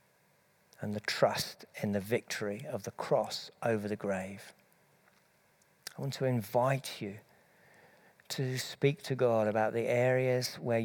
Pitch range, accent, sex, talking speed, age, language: 115-145 Hz, British, male, 140 wpm, 50-69, English